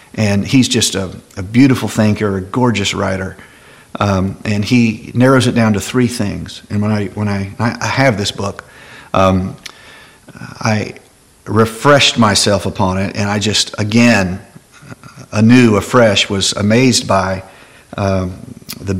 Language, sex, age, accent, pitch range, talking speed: English, male, 50-69, American, 100-120 Hz, 140 wpm